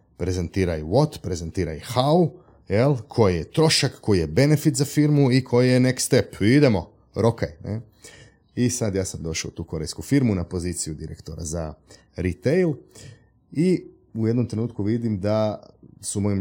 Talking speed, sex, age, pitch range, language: 155 wpm, male, 30-49, 90-115 Hz, Croatian